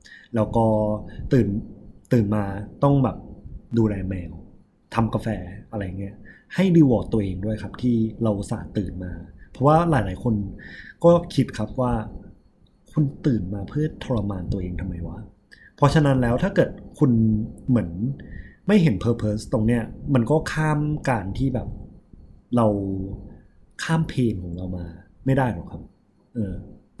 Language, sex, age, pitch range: Thai, male, 20-39, 100-120 Hz